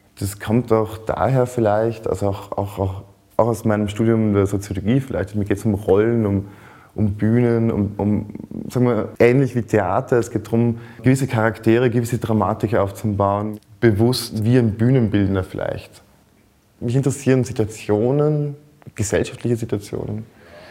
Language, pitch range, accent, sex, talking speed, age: German, 100-115 Hz, German, male, 140 wpm, 20-39